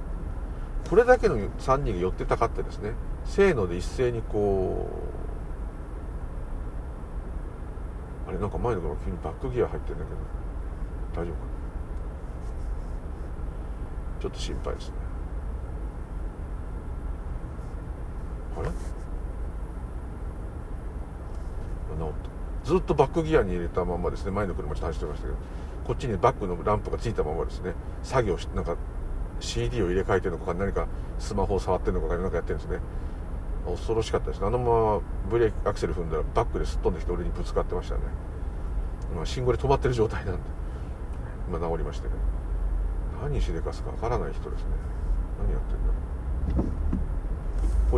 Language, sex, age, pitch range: Japanese, male, 60-79, 65-85 Hz